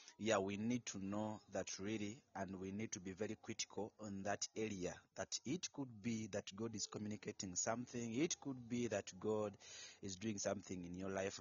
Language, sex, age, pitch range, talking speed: English, male, 30-49, 95-110 Hz, 195 wpm